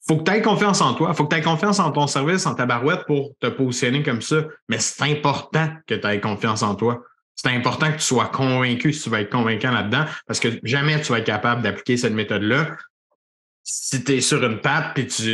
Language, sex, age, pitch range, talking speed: French, male, 30-49, 120-160 Hz, 245 wpm